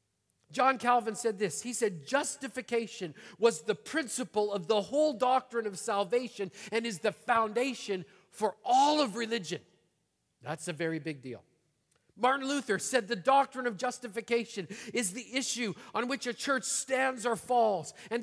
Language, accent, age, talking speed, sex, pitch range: English, American, 50-69, 155 wpm, male, 170-250 Hz